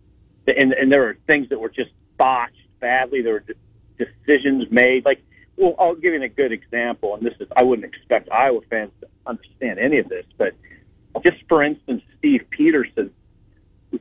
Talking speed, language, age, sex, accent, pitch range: 180 wpm, English, 40-59, male, American, 115-170 Hz